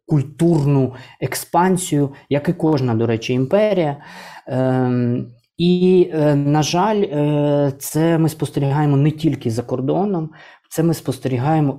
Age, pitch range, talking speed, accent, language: 20-39, 120-145 Hz, 120 wpm, native, Ukrainian